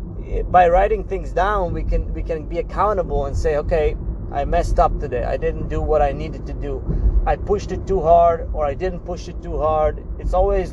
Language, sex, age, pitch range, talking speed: English, male, 30-49, 155-200 Hz, 220 wpm